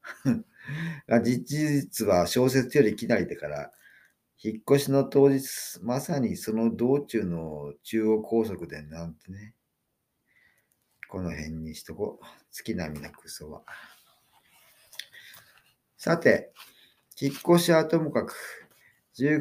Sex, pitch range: male, 90-130 Hz